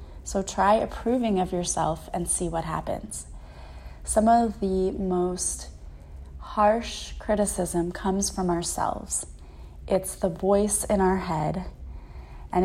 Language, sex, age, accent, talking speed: English, female, 20-39, American, 120 wpm